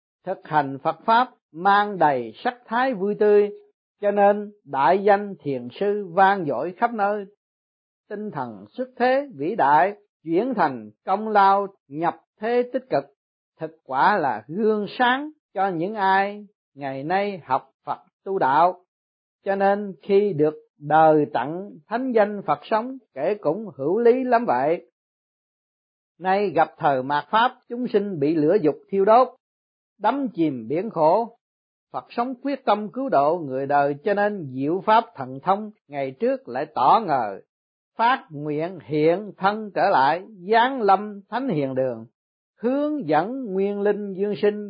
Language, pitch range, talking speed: Vietnamese, 155-220 Hz, 155 wpm